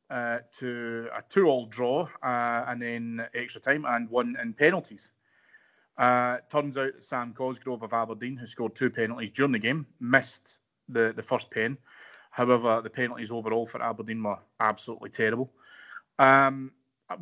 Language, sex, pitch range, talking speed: English, male, 115-135 Hz, 150 wpm